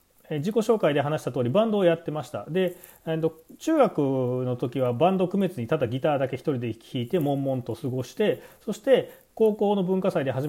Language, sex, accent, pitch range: Japanese, male, native, 120-185 Hz